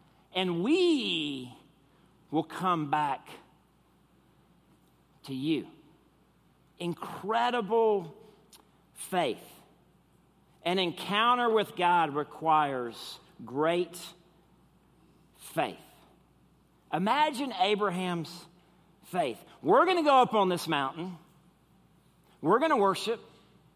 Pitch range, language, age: 160-205 Hz, English, 50-69